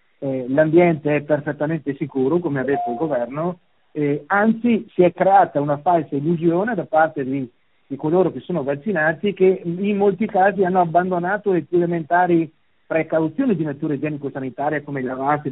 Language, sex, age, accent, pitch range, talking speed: Italian, male, 50-69, native, 140-175 Hz, 160 wpm